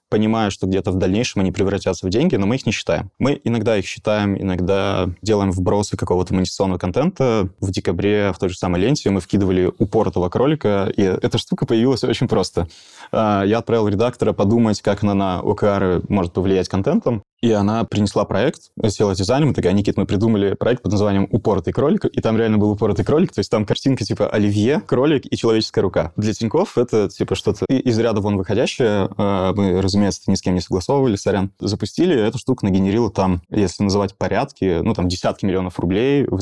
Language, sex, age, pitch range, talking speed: Russian, male, 20-39, 95-110 Hz, 190 wpm